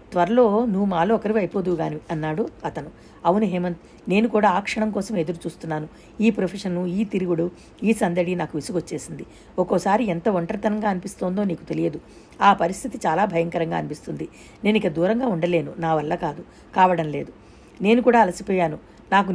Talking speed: 150 wpm